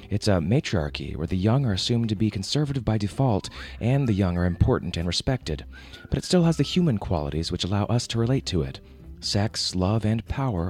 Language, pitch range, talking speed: English, 85-120 Hz, 215 wpm